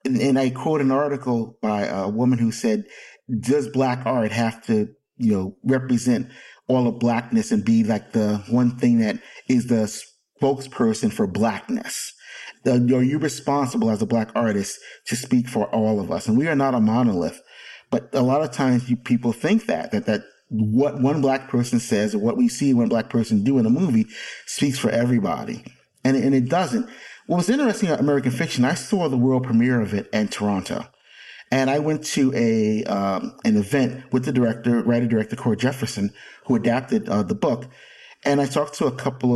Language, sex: English, male